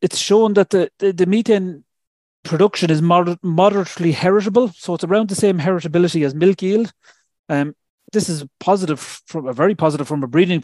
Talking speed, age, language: 180 wpm, 30-49, English